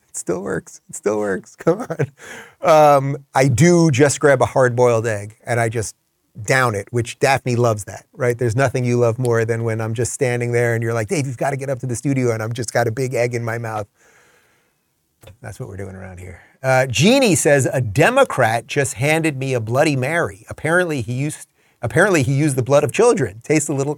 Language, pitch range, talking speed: English, 115-150 Hz, 220 wpm